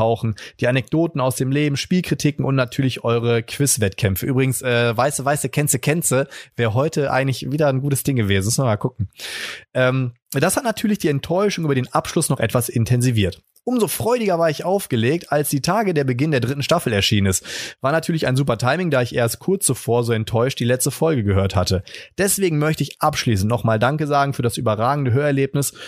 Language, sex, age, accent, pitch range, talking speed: German, male, 30-49, German, 115-145 Hz, 190 wpm